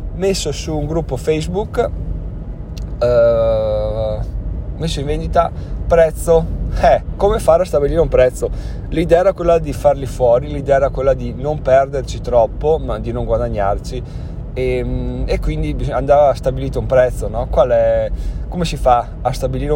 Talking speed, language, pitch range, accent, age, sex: 150 wpm, Italian, 115-140 Hz, native, 20-39, male